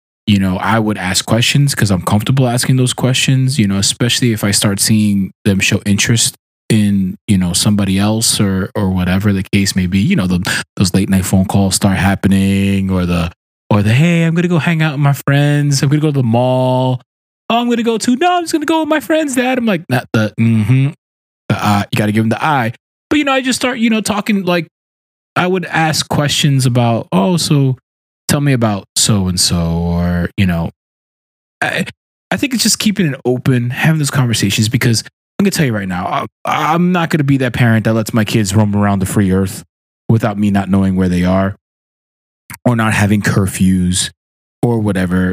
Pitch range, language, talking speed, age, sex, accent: 100-135 Hz, English, 220 wpm, 20-39, male, American